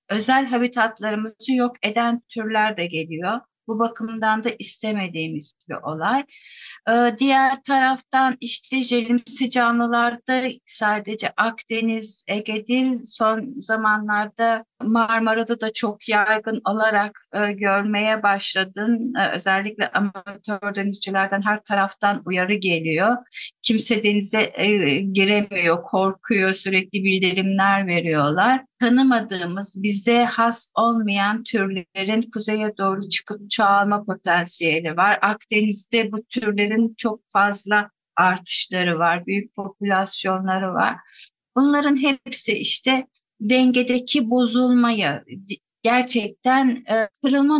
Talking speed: 95 wpm